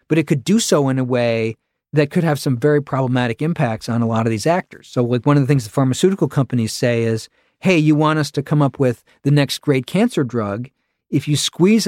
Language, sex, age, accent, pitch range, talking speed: English, male, 40-59, American, 125-160 Hz, 240 wpm